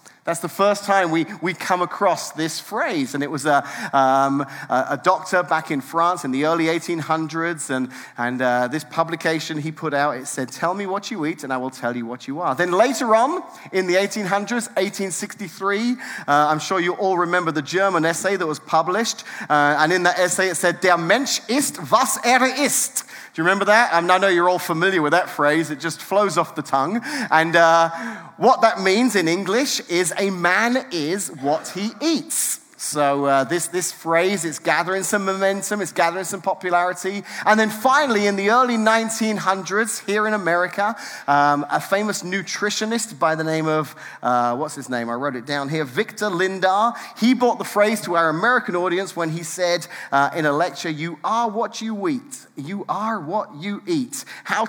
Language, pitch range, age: English, 160-210 Hz, 30-49